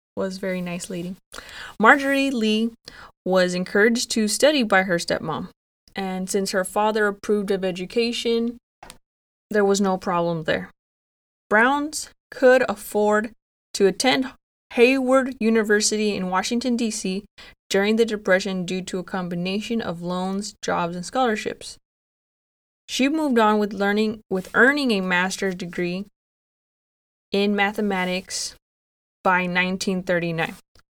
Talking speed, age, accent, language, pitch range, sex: 120 wpm, 20-39, American, English, 185-225 Hz, female